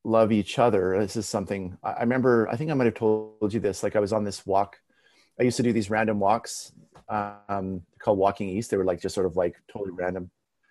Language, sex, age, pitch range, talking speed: English, male, 30-49, 100-115 Hz, 235 wpm